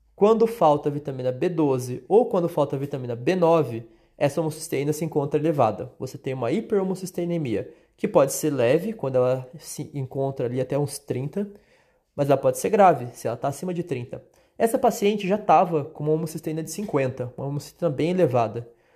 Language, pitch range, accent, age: Portuguese, 135-195 Hz, Brazilian, 20-39